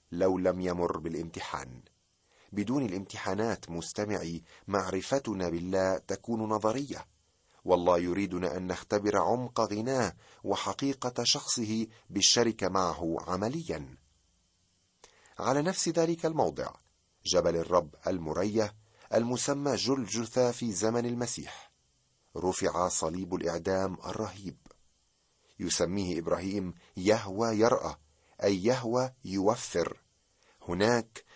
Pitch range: 90-120 Hz